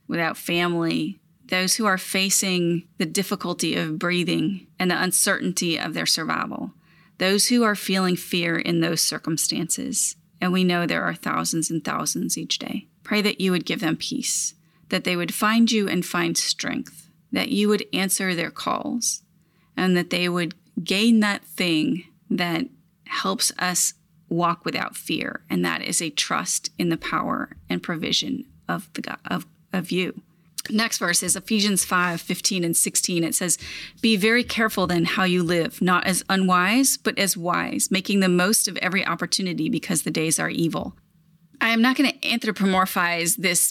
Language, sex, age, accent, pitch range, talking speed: English, female, 30-49, American, 170-200 Hz, 170 wpm